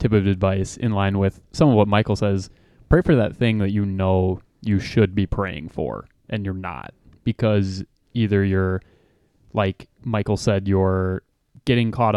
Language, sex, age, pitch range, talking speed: English, male, 20-39, 95-115 Hz, 175 wpm